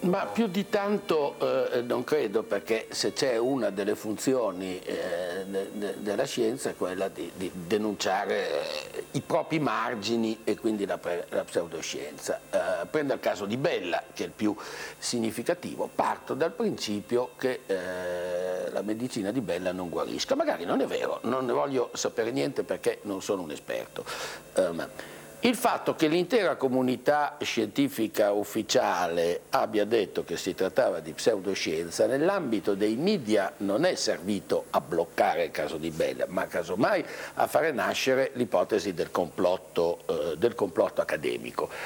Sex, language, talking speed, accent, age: male, Italian, 145 wpm, native, 60-79